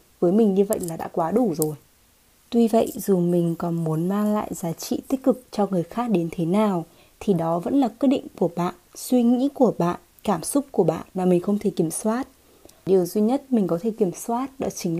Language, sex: Vietnamese, female